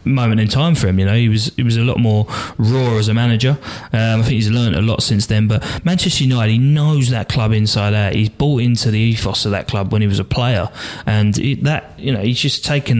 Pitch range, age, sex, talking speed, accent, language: 105-130 Hz, 20-39, male, 265 wpm, British, English